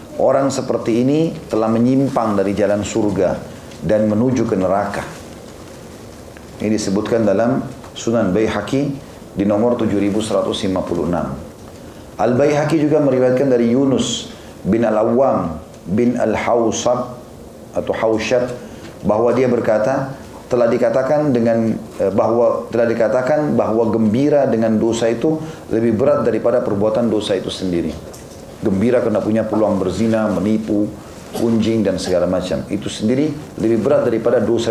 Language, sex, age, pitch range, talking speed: Indonesian, male, 40-59, 105-125 Hz, 120 wpm